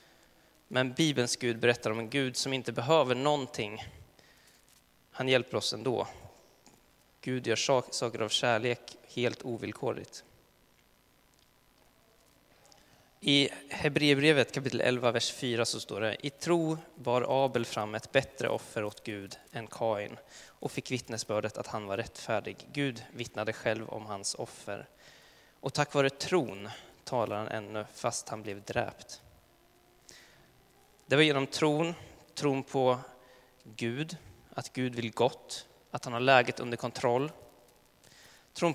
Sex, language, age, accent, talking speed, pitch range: male, Swedish, 20-39, native, 130 wpm, 115-140 Hz